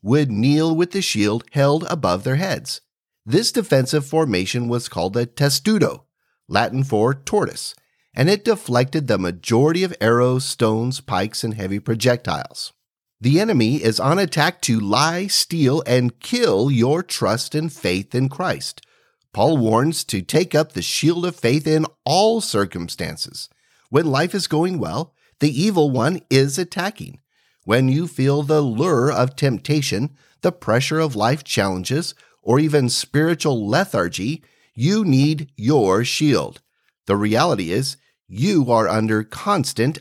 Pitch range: 115-160 Hz